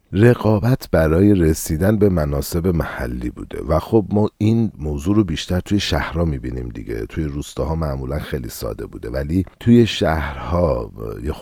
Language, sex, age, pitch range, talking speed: Persian, male, 50-69, 70-100 Hz, 145 wpm